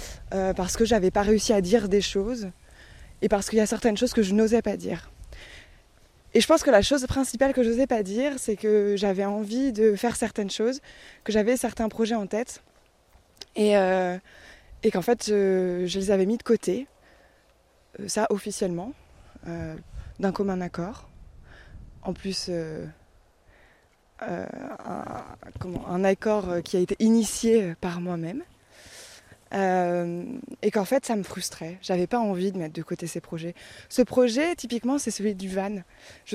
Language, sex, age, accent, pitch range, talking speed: French, female, 20-39, French, 190-230 Hz, 170 wpm